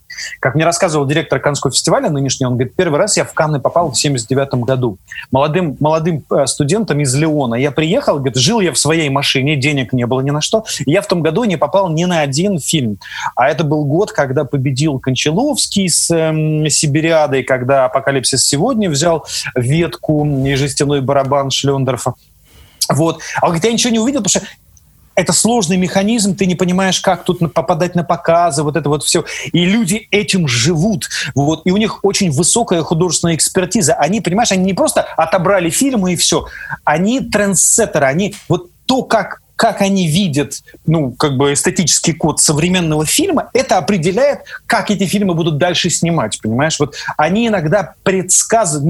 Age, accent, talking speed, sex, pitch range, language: 30-49, native, 170 wpm, male, 145-190 Hz, Russian